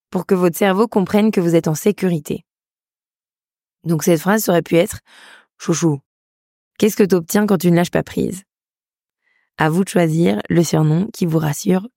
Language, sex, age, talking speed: French, female, 20-39, 185 wpm